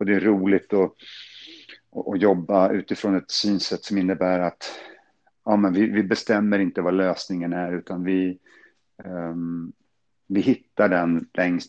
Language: Swedish